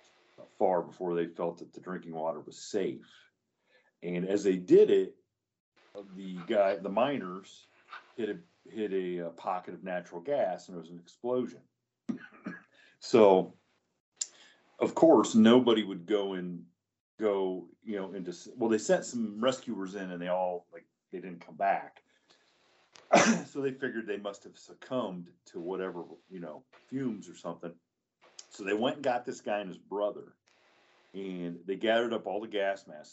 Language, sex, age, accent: English, male, 40-59, American